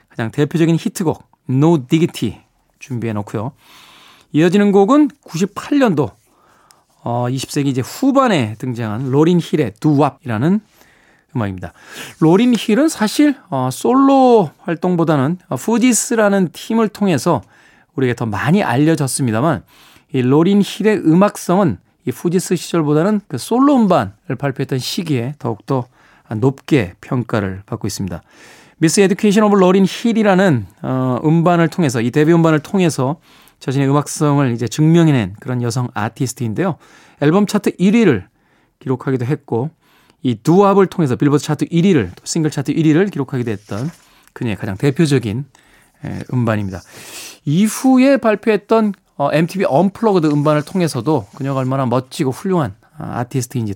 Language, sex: Korean, male